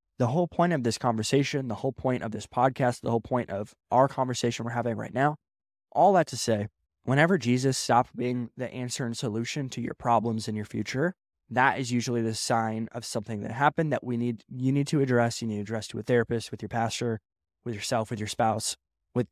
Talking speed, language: 225 wpm, English